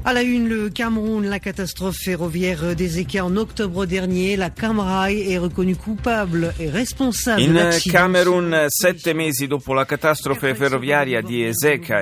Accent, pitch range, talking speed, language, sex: native, 120-170 Hz, 100 wpm, Italian, male